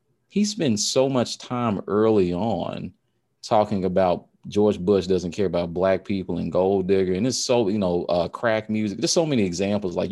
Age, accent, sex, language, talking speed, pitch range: 30-49, American, male, English, 190 wpm, 90-105 Hz